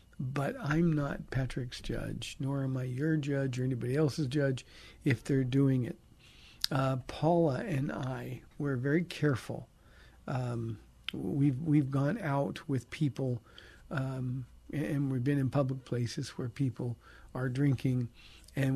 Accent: American